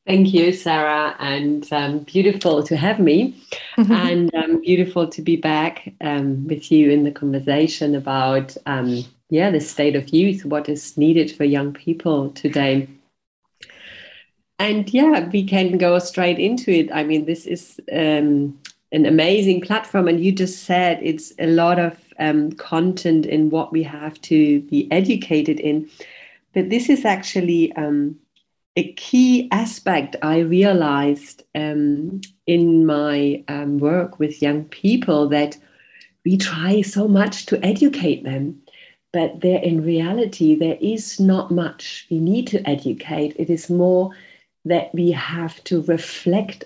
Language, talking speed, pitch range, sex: English, 145 wpm, 150-190 Hz, female